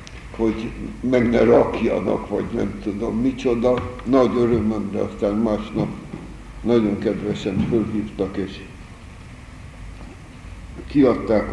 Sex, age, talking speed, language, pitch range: male, 60-79, 95 wpm, Hungarian, 105-120 Hz